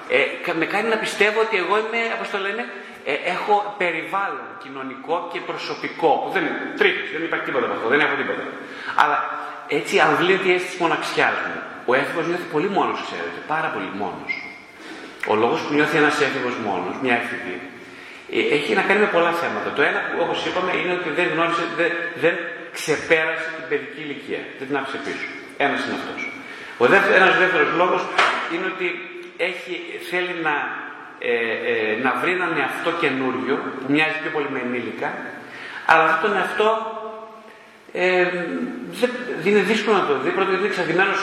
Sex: male